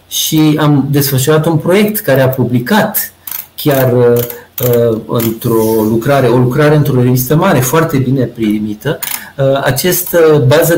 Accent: native